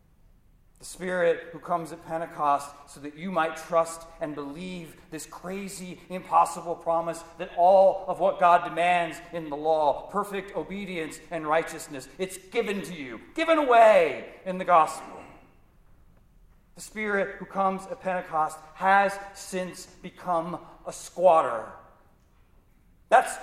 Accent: American